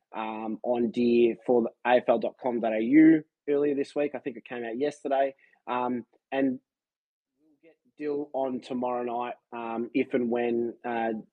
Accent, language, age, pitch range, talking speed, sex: Australian, English, 20-39, 115-135 Hz, 150 wpm, male